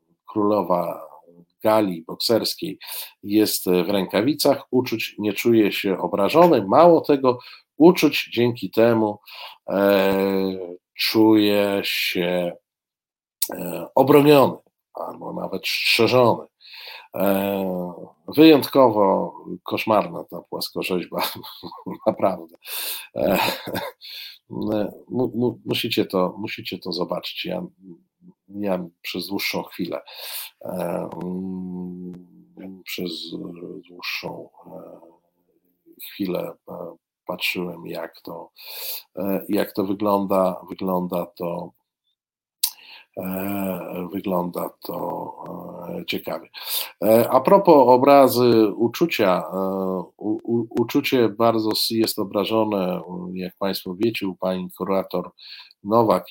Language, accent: Polish, native